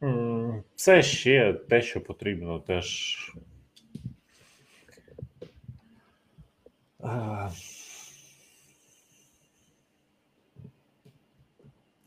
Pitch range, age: 80-100 Hz, 30-49